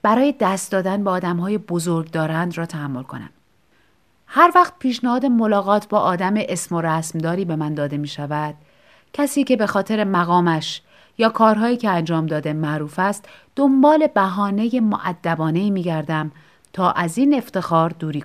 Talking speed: 155 wpm